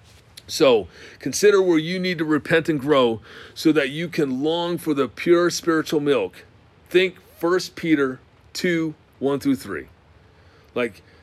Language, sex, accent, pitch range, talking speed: English, male, American, 120-165 Hz, 145 wpm